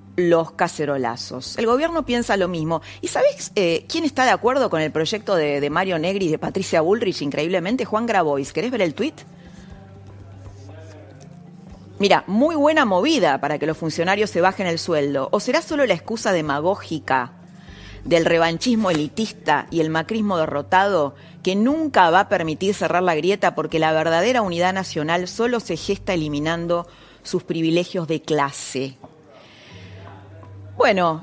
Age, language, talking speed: 30-49, Spanish, 150 wpm